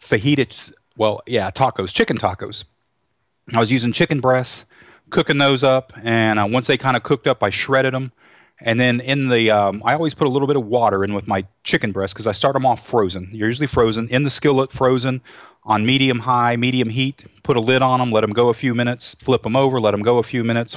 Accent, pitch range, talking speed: American, 110-135 Hz, 230 wpm